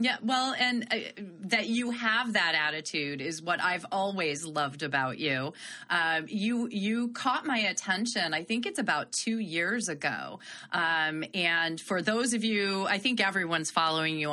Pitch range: 165-220 Hz